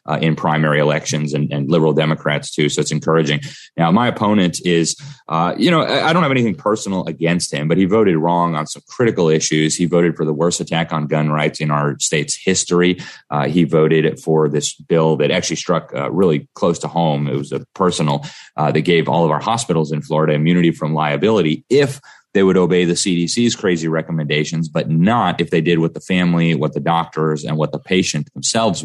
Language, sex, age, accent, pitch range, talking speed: English, male, 30-49, American, 75-90 Hz, 210 wpm